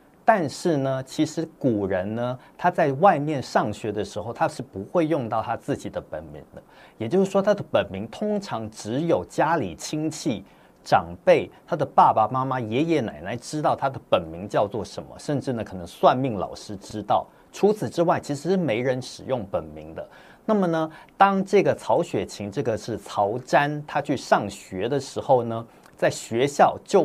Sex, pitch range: male, 105-165 Hz